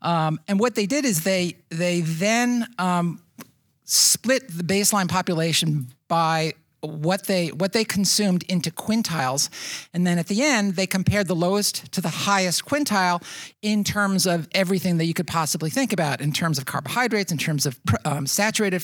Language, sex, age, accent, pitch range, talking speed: English, male, 50-69, American, 160-195 Hz, 170 wpm